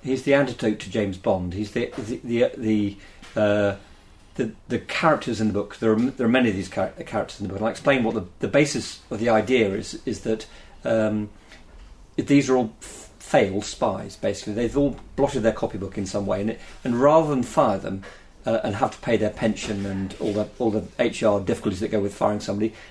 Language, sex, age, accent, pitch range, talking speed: English, male, 40-59, British, 105-120 Hz, 215 wpm